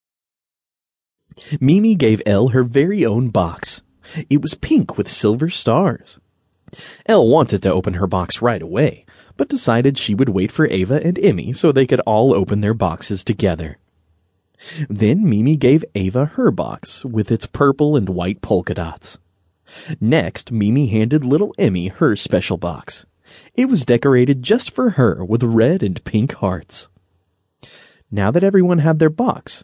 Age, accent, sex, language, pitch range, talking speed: 30-49, American, male, English, 95-155 Hz, 155 wpm